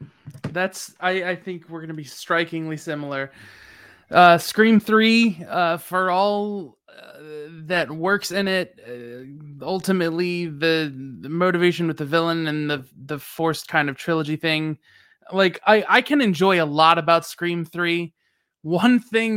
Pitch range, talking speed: 160-200 Hz, 150 wpm